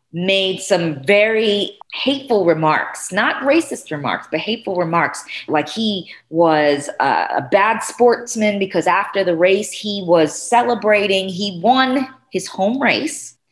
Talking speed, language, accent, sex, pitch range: 135 wpm, English, American, female, 155-220 Hz